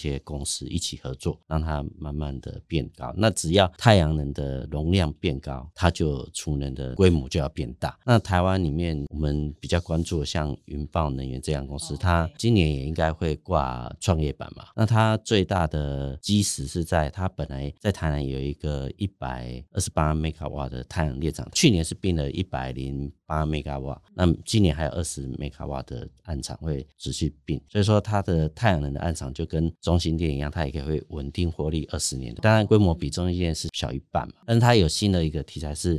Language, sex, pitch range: Chinese, male, 70-85 Hz